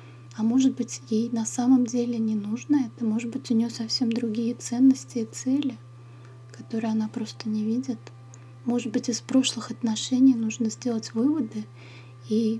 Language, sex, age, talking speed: Russian, female, 20-39, 155 wpm